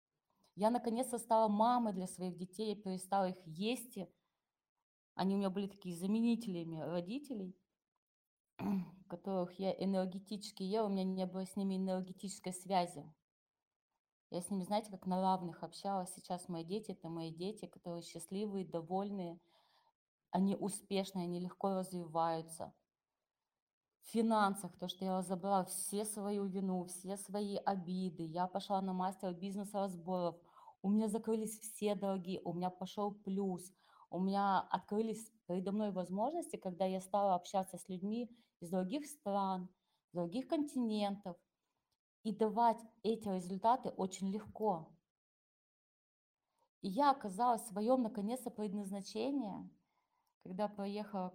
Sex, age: female, 20-39